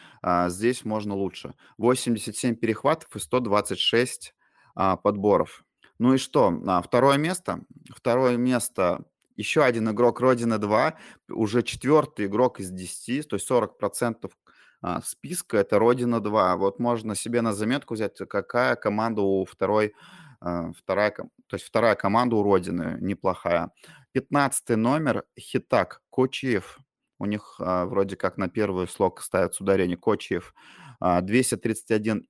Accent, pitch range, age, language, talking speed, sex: native, 95-120 Hz, 20-39, Russian, 125 wpm, male